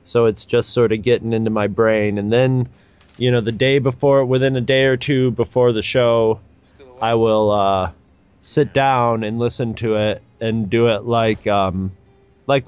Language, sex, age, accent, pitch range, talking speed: English, male, 30-49, American, 110-135 Hz, 185 wpm